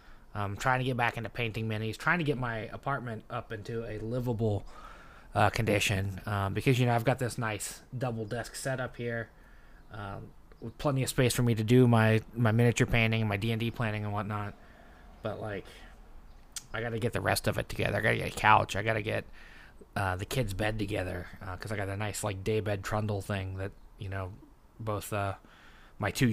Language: English